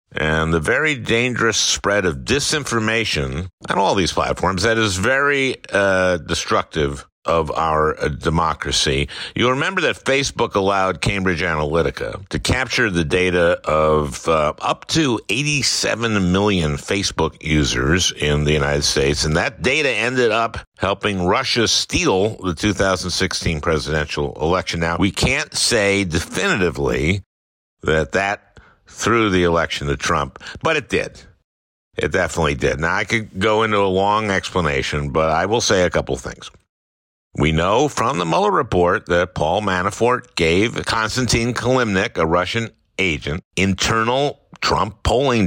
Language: English